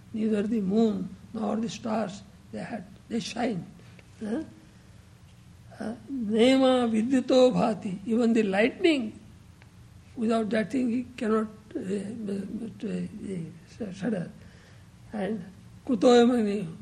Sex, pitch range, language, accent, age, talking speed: male, 210-255 Hz, English, Indian, 60-79, 105 wpm